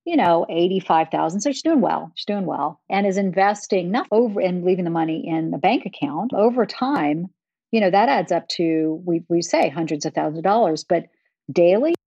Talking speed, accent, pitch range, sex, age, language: 205 wpm, American, 170-230 Hz, female, 50-69, English